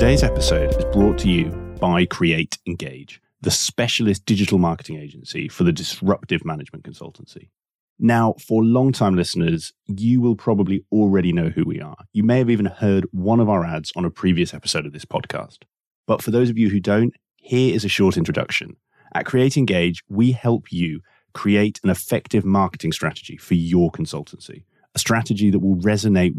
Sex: male